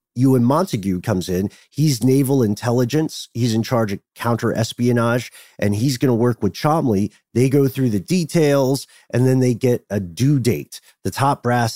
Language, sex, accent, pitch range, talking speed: English, male, American, 100-130 Hz, 180 wpm